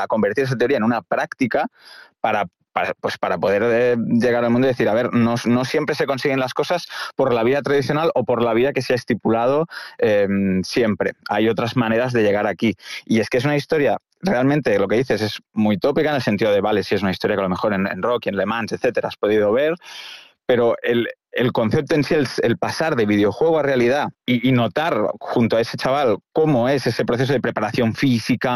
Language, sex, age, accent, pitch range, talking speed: Spanish, male, 30-49, Spanish, 105-125 Hz, 225 wpm